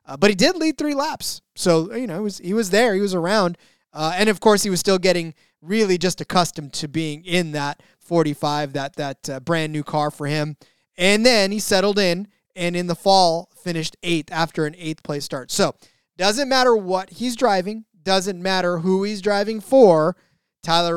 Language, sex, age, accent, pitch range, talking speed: English, male, 20-39, American, 155-190 Hz, 195 wpm